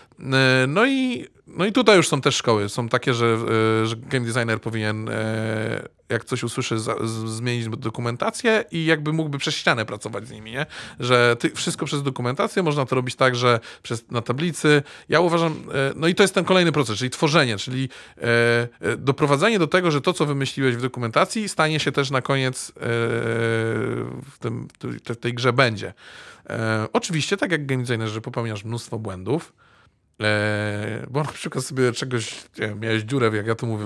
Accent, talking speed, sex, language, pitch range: native, 170 wpm, male, Polish, 115-150 Hz